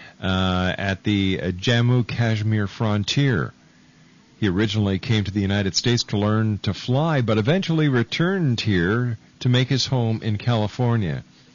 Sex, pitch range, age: male, 100-125 Hz, 50-69